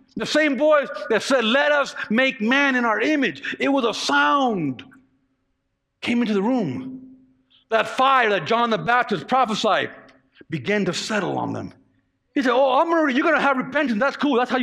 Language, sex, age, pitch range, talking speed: English, male, 50-69, 215-275 Hz, 185 wpm